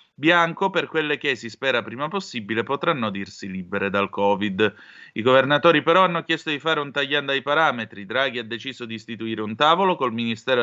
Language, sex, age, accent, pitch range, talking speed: Italian, male, 30-49, native, 115-150 Hz, 185 wpm